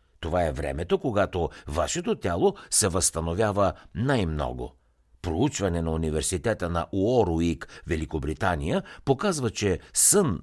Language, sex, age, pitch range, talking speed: Bulgarian, male, 60-79, 80-105 Hz, 105 wpm